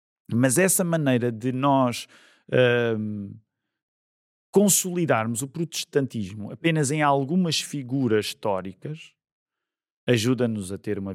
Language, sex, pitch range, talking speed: Portuguese, male, 125-170 Hz, 90 wpm